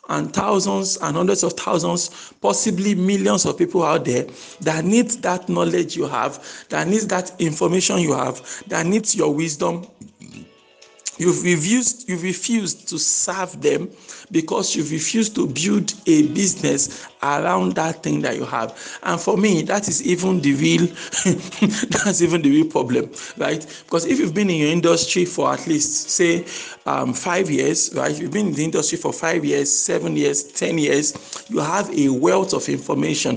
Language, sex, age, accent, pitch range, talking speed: English, male, 50-69, Nigerian, 155-210 Hz, 165 wpm